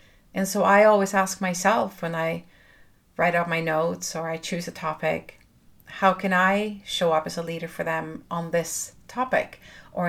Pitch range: 165-190 Hz